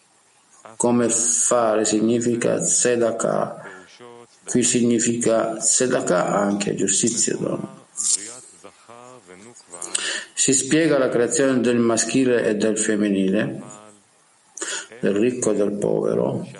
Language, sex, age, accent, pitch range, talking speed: Italian, male, 50-69, native, 110-130 Hz, 85 wpm